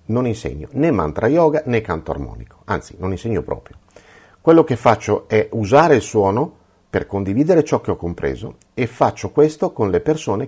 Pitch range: 85-125 Hz